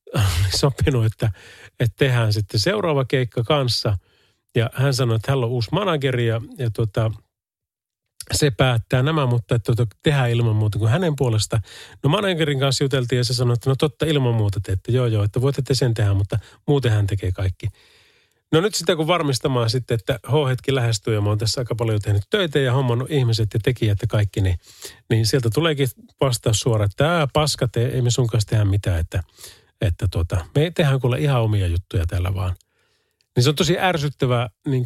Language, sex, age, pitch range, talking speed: Finnish, male, 30-49, 105-140 Hz, 195 wpm